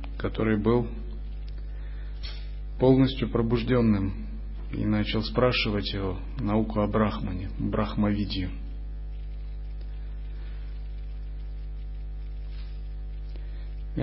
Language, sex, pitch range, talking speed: Russian, male, 75-120 Hz, 55 wpm